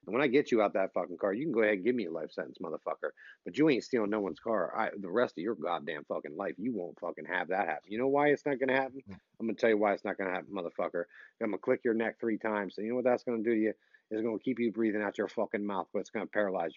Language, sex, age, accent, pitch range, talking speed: English, male, 40-59, American, 110-145 Hz, 335 wpm